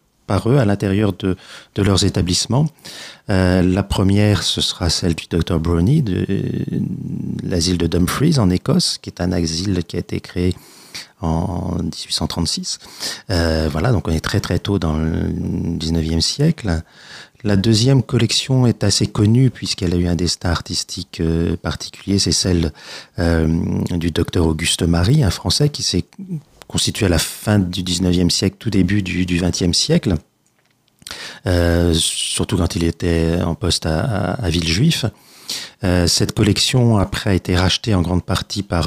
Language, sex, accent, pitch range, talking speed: French, male, French, 85-105 Hz, 165 wpm